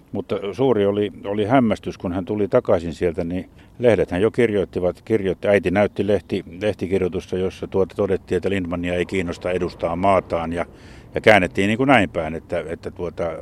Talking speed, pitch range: 175 wpm, 90-105 Hz